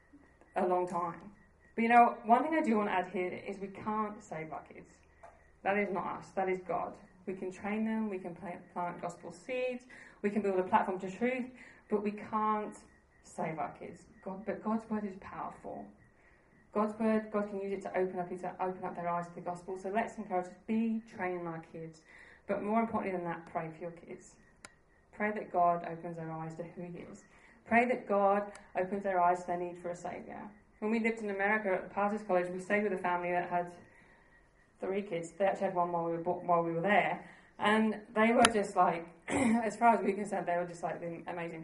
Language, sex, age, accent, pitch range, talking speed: English, female, 30-49, British, 175-210 Hz, 225 wpm